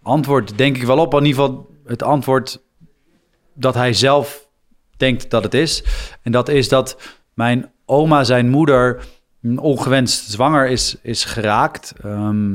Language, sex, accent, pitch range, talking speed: Dutch, male, Dutch, 110-130 Hz, 145 wpm